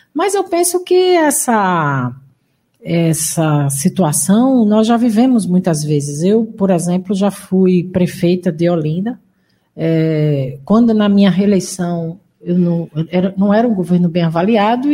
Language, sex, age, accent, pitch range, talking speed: Portuguese, female, 50-69, Brazilian, 170-235 Hz, 125 wpm